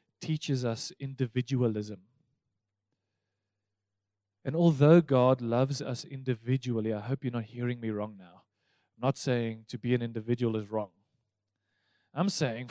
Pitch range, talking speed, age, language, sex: 105-140 Hz, 130 wpm, 20-39, English, male